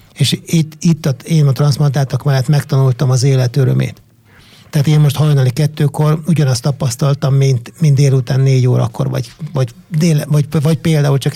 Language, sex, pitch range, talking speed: Hungarian, male, 130-155 Hz, 165 wpm